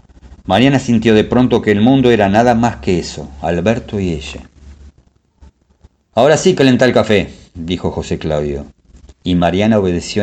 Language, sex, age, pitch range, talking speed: Spanish, male, 50-69, 80-110 Hz, 155 wpm